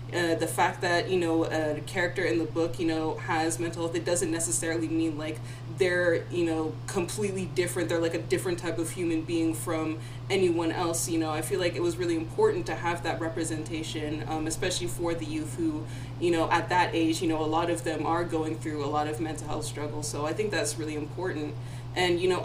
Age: 20-39